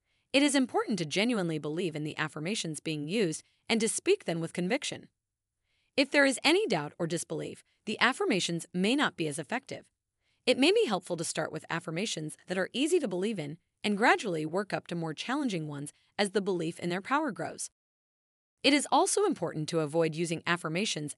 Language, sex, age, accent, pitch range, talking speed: English, female, 30-49, American, 160-245 Hz, 195 wpm